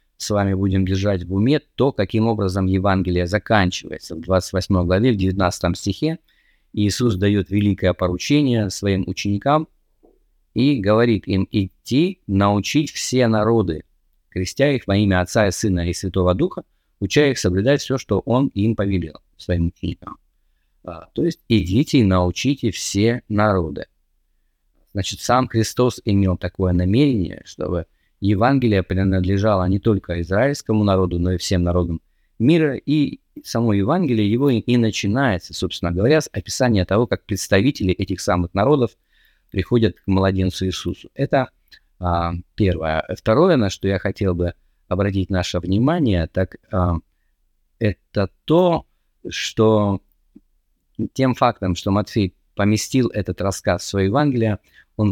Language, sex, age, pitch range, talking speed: Russian, male, 20-39, 90-115 Hz, 130 wpm